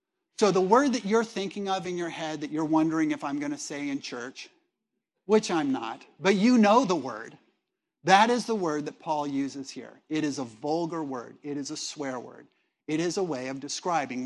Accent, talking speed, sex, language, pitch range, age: American, 220 wpm, male, English, 150-210 Hz, 50-69